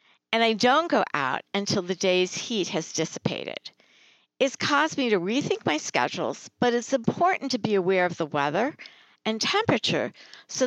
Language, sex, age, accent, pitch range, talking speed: English, female, 60-79, American, 175-240 Hz, 170 wpm